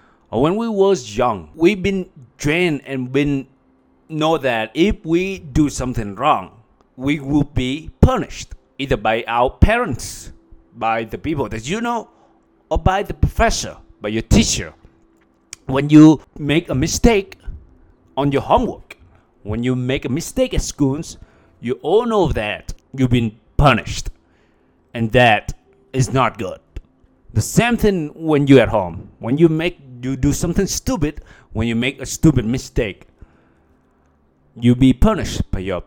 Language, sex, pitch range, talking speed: English, male, 110-160 Hz, 150 wpm